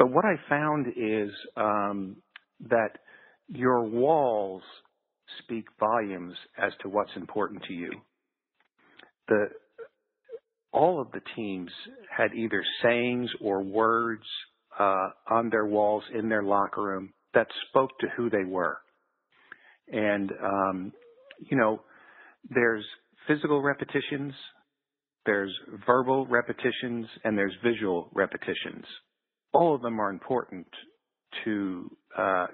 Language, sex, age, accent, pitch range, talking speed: English, male, 50-69, American, 100-125 Hz, 115 wpm